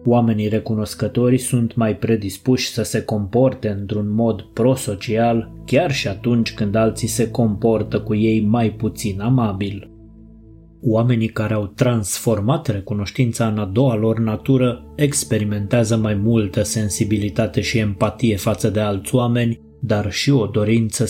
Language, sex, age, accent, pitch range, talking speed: Romanian, male, 20-39, native, 105-120 Hz, 135 wpm